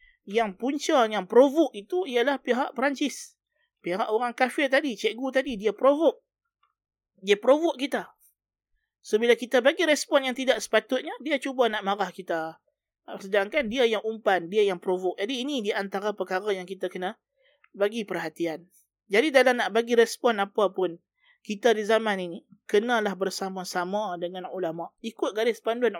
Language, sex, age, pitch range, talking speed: Malay, male, 20-39, 200-255 Hz, 155 wpm